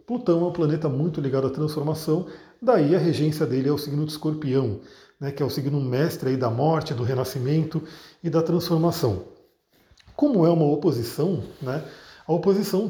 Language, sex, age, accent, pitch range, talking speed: Portuguese, male, 40-59, Brazilian, 145-195 Hz, 175 wpm